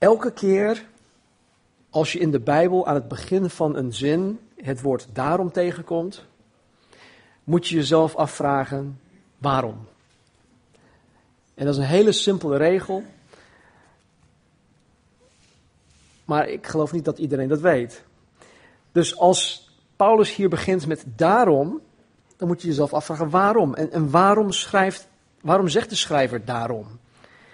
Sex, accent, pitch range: male, Dutch, 130-175 Hz